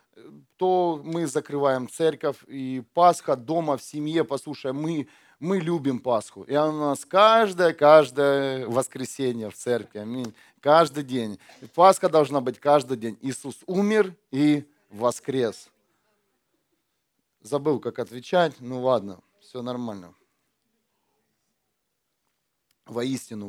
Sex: male